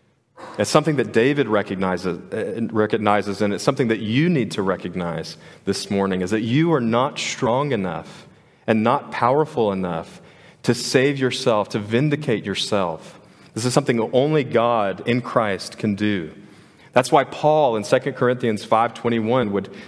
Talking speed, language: 155 wpm, English